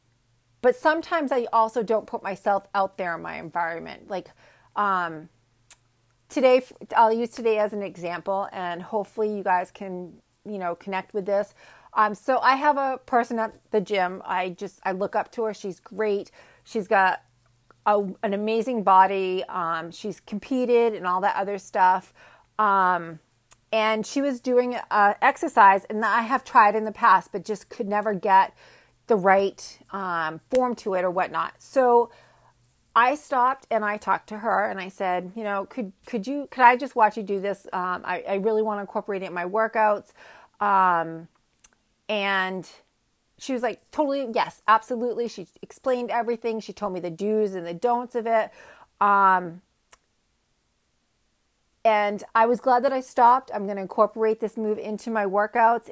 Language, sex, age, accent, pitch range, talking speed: English, female, 40-59, American, 185-230 Hz, 170 wpm